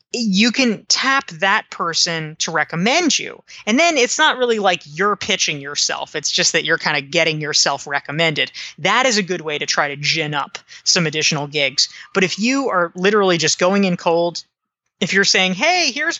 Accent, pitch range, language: American, 170-220 Hz, English